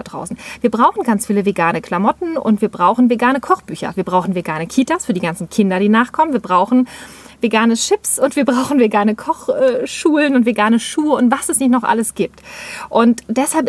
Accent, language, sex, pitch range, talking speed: German, German, female, 210-265 Hz, 190 wpm